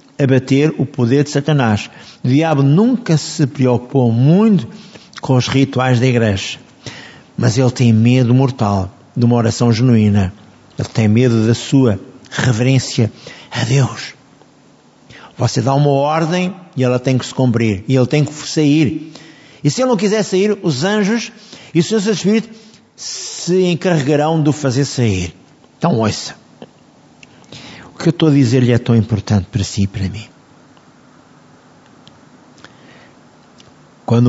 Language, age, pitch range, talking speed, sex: Portuguese, 50-69, 120-155 Hz, 145 wpm, male